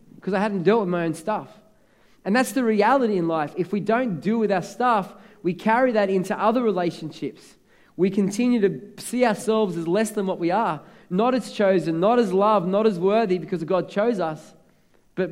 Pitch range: 165-200 Hz